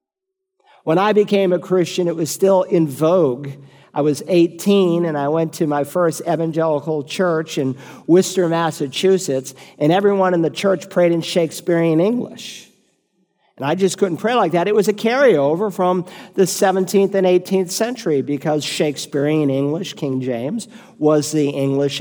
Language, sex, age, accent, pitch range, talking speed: English, male, 50-69, American, 150-210 Hz, 160 wpm